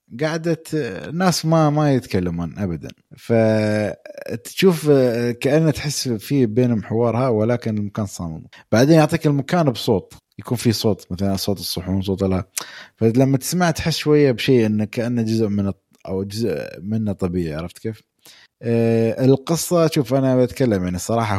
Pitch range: 90-125 Hz